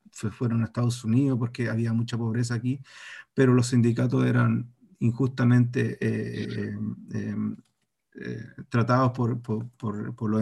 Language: Spanish